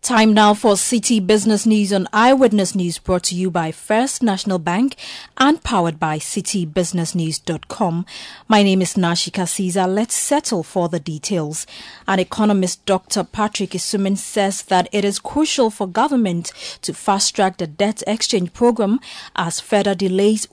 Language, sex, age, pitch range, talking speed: English, female, 30-49, 180-220 Hz, 150 wpm